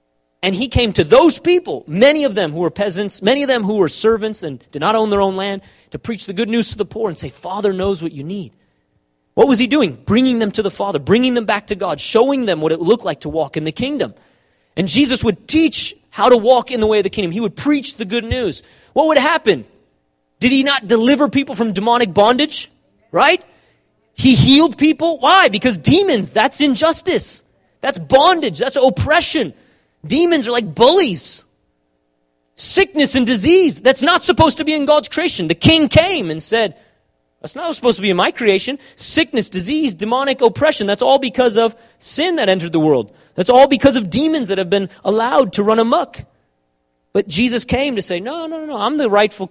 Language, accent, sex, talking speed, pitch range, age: English, American, male, 210 wpm, 185-280 Hz, 30-49